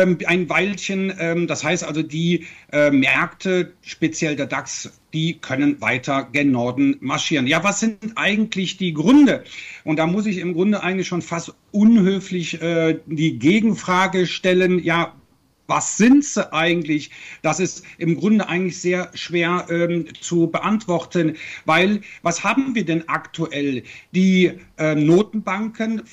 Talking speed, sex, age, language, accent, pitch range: 135 wpm, male, 50-69, German, German, 155-185 Hz